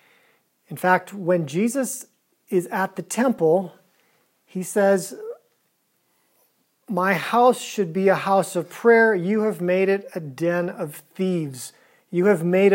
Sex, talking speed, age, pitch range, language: male, 135 wpm, 40-59, 155-205 Hz, English